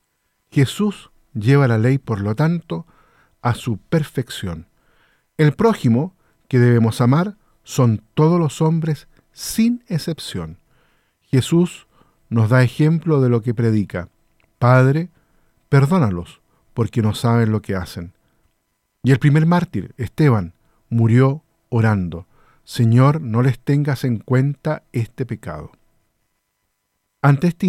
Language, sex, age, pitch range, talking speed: Spanish, male, 50-69, 110-155 Hz, 115 wpm